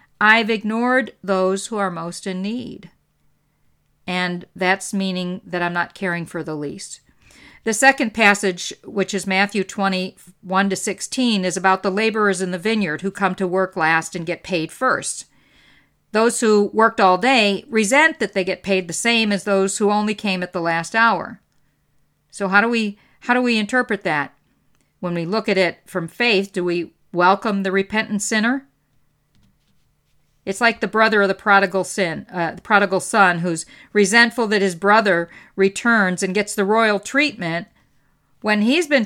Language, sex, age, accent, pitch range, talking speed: English, female, 50-69, American, 185-220 Hz, 170 wpm